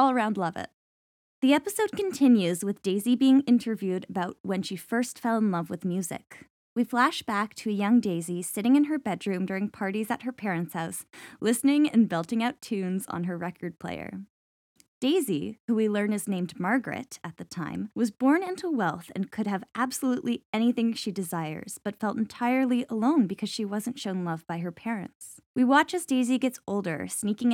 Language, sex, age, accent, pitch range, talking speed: English, female, 10-29, American, 180-235 Hz, 185 wpm